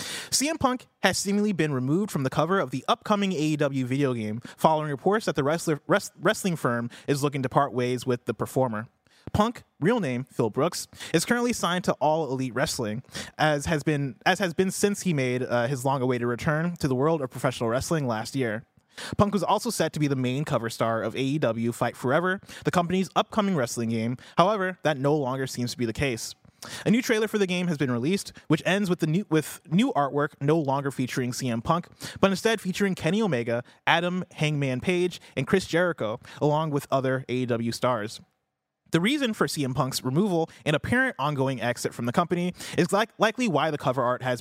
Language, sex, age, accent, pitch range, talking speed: English, male, 20-39, American, 125-180 Hz, 205 wpm